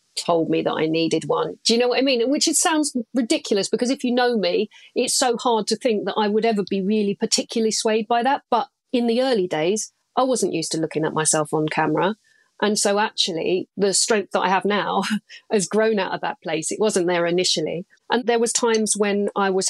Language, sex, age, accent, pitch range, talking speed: English, female, 40-59, British, 180-230 Hz, 230 wpm